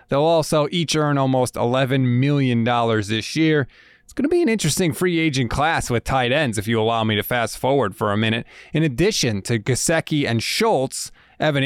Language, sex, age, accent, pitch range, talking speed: English, male, 30-49, American, 115-160 Hz, 195 wpm